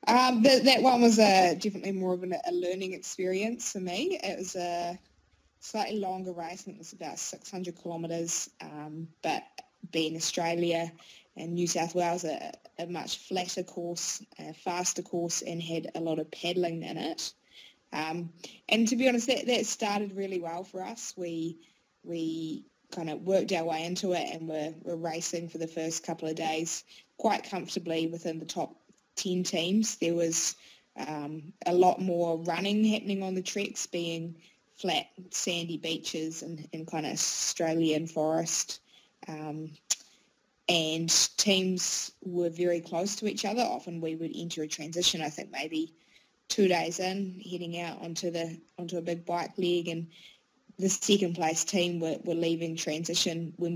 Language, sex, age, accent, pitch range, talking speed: English, female, 20-39, Australian, 165-190 Hz, 165 wpm